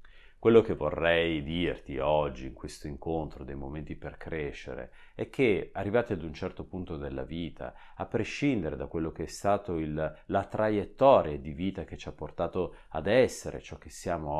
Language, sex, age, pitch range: Italian, male, 30-49, 80-95 Hz